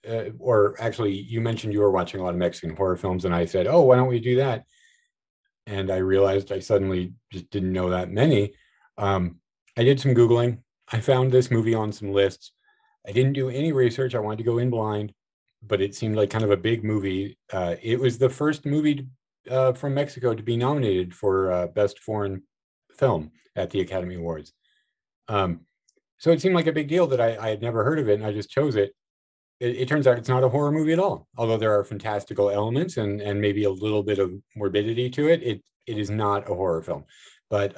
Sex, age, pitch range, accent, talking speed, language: male, 40-59, 100-135 Hz, American, 225 wpm, English